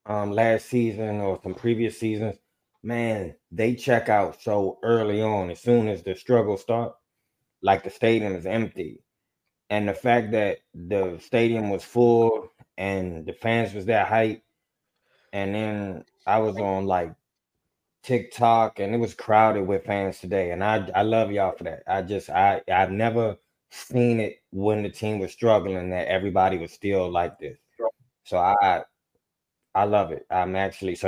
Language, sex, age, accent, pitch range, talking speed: English, male, 20-39, American, 100-115 Hz, 165 wpm